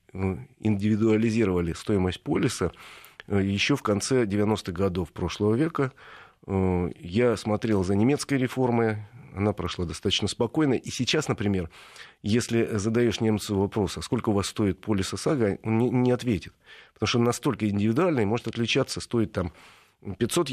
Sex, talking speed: male, 135 wpm